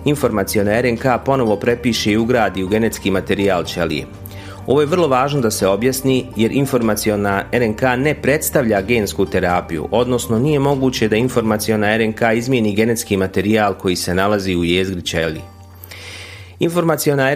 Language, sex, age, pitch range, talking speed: Croatian, male, 30-49, 95-125 Hz, 135 wpm